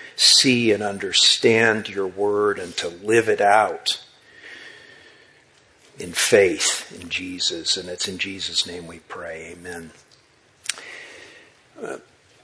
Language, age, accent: English, 50-69, American